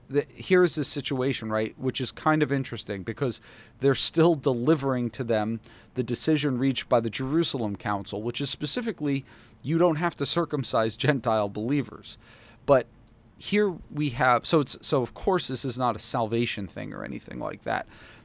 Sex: male